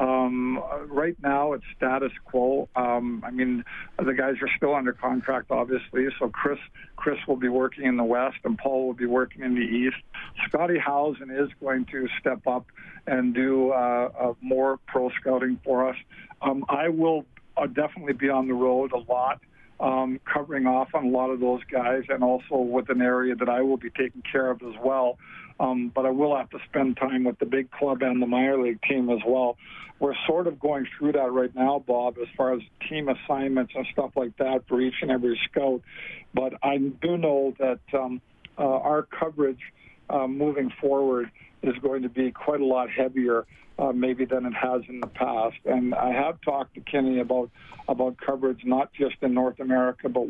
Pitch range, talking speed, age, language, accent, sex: 125-135 Hz, 200 wpm, 50-69, English, American, male